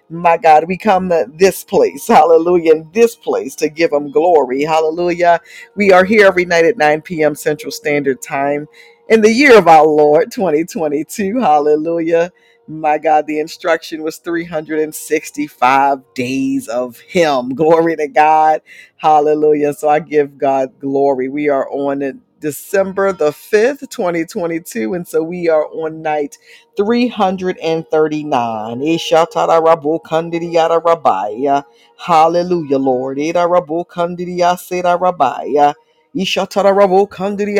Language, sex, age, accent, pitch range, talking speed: English, female, 50-69, American, 150-175 Hz, 110 wpm